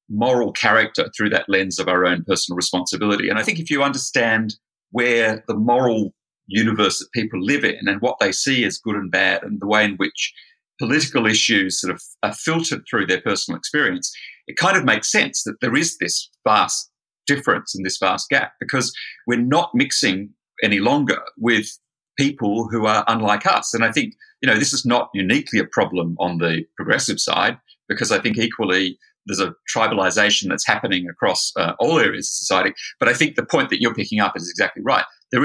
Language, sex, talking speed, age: English, male, 200 wpm, 40-59